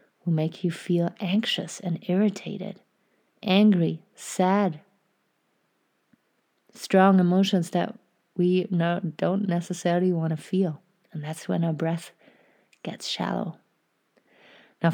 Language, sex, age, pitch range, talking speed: English, female, 30-49, 165-200 Hz, 110 wpm